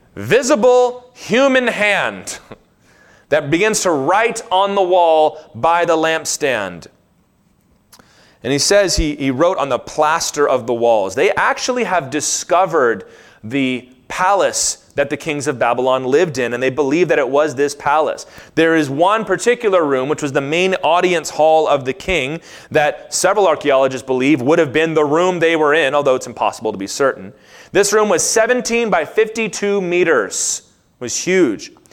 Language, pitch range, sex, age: English, 135-180 Hz, male, 30-49